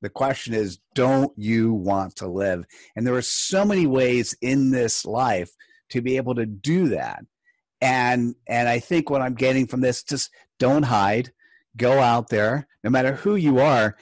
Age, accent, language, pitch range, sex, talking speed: 50-69, American, English, 115-150 Hz, male, 185 wpm